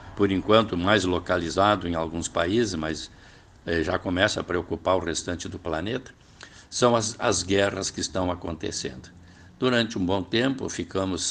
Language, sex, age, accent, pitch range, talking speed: Portuguese, male, 60-79, Brazilian, 90-105 Hz, 155 wpm